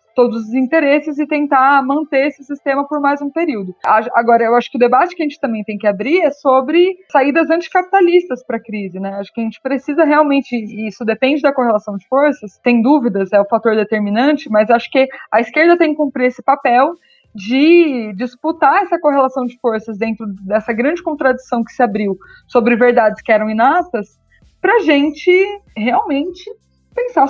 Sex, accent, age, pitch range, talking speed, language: female, Brazilian, 20-39, 225-290 Hz, 185 wpm, Portuguese